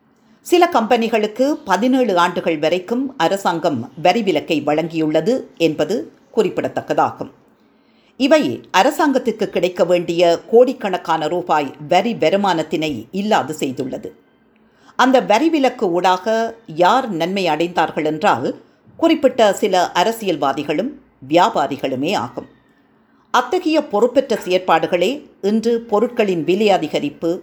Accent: native